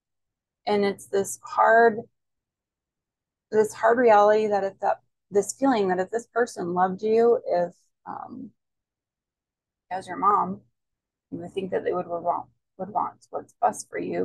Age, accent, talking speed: 20-39, American, 155 wpm